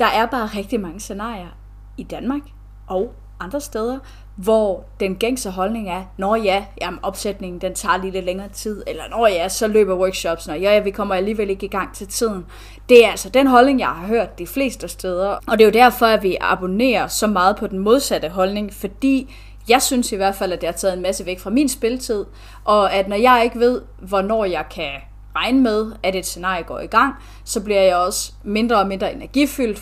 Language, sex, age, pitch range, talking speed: Danish, female, 30-49, 185-230 Hz, 215 wpm